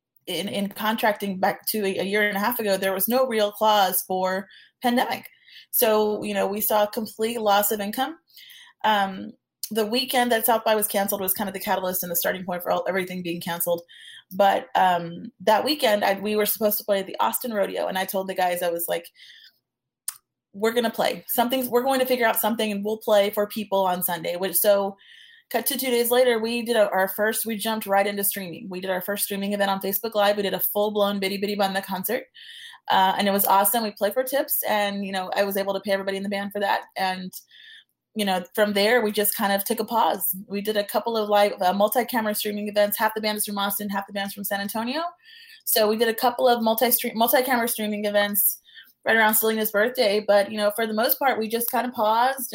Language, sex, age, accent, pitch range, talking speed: English, female, 30-49, American, 195-230 Hz, 235 wpm